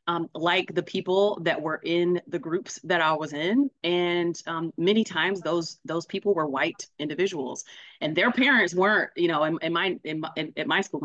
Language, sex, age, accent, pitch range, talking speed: English, female, 30-49, American, 160-205 Hz, 195 wpm